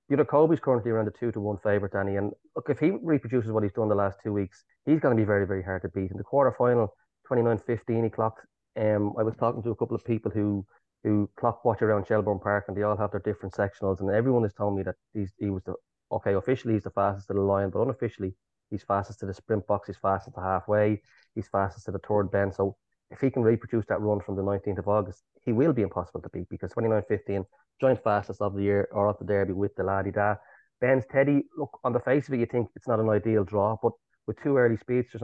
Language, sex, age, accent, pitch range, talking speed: English, male, 20-39, Irish, 100-115 Hz, 250 wpm